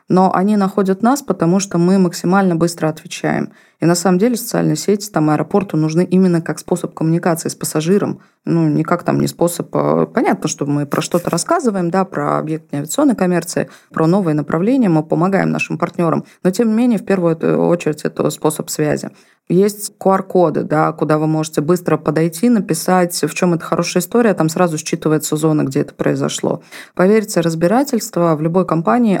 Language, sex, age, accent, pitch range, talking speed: Russian, female, 20-39, native, 160-200 Hz, 175 wpm